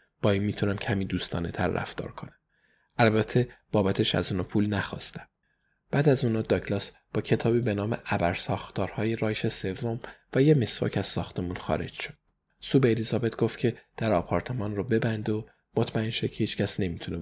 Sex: male